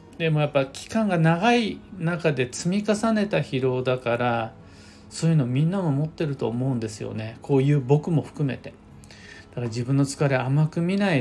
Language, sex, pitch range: Japanese, male, 115-195 Hz